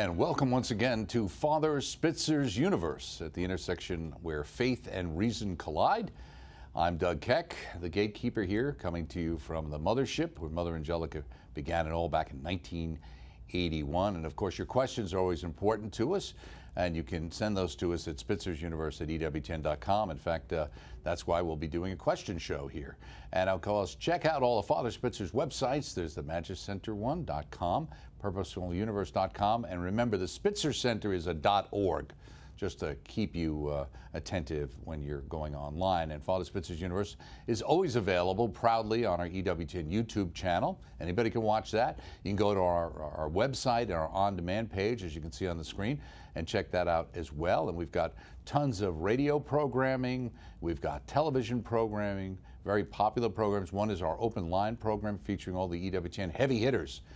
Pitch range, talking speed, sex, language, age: 80-110 Hz, 185 wpm, male, English, 50-69